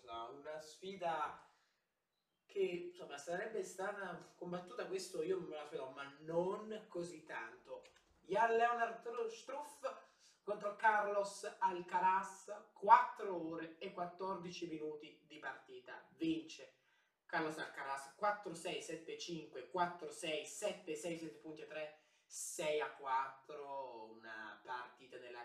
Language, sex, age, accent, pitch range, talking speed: Italian, male, 20-39, native, 150-230 Hz, 105 wpm